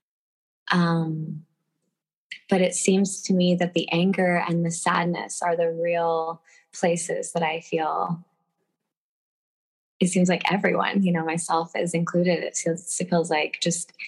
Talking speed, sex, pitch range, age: 145 wpm, female, 165-175 Hz, 20-39